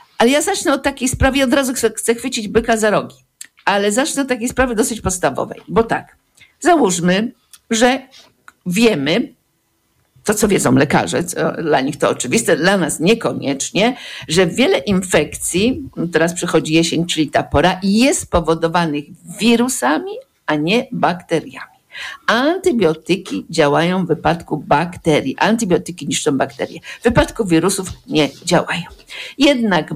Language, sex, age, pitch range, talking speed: Polish, female, 50-69, 165-240 Hz, 130 wpm